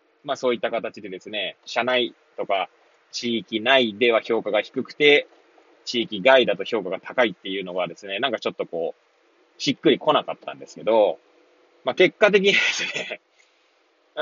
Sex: male